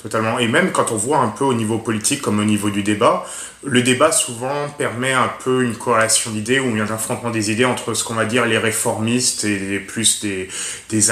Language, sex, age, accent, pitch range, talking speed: English, male, 20-39, French, 110-125 Hz, 220 wpm